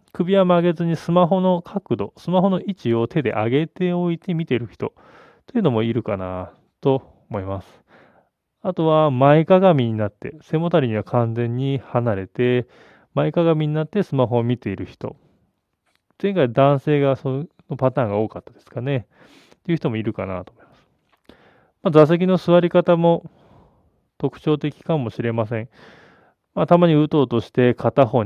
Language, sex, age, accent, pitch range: Japanese, male, 20-39, native, 115-155 Hz